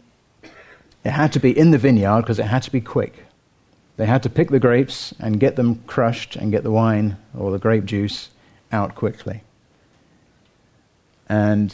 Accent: British